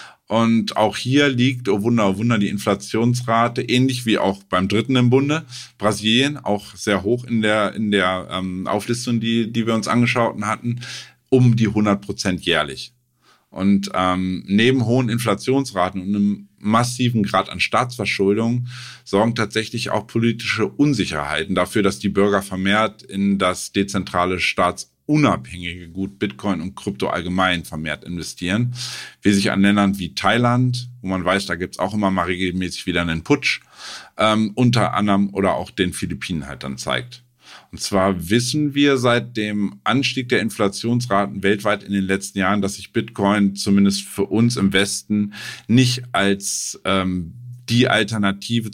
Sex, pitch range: male, 95-120 Hz